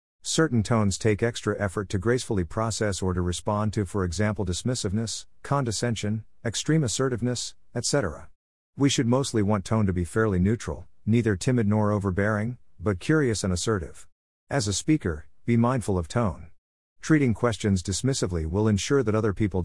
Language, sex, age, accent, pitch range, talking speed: English, male, 50-69, American, 90-115 Hz, 155 wpm